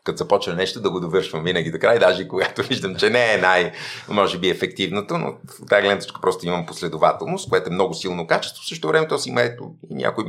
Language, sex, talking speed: Bulgarian, male, 225 wpm